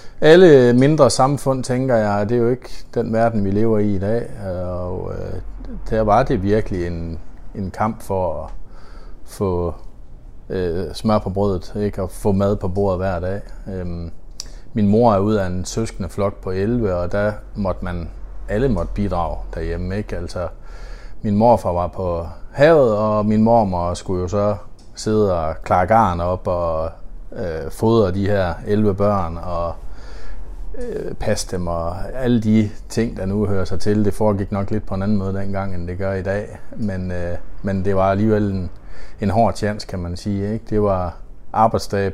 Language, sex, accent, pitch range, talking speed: Danish, male, native, 90-110 Hz, 175 wpm